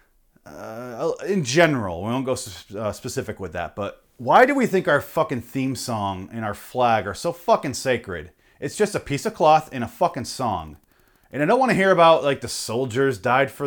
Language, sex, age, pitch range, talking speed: English, male, 30-49, 120-165 Hz, 215 wpm